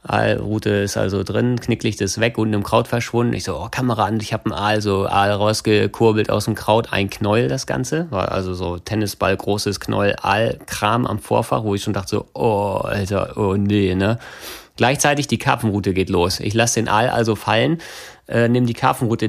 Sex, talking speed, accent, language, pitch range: male, 195 wpm, German, German, 100-120 Hz